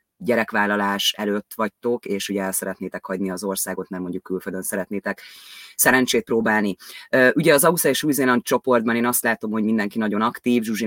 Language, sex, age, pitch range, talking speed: Hungarian, female, 30-49, 105-120 Hz, 165 wpm